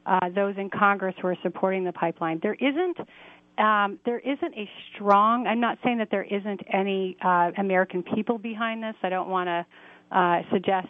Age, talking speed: 40-59, 180 wpm